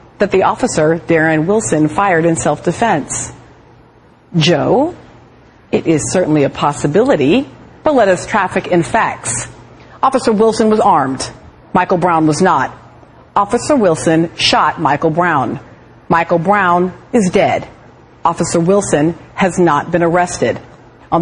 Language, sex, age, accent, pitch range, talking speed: English, female, 40-59, American, 175-235 Hz, 125 wpm